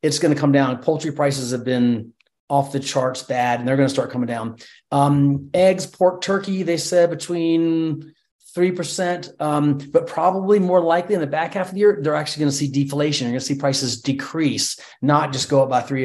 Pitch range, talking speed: 135-160 Hz, 215 wpm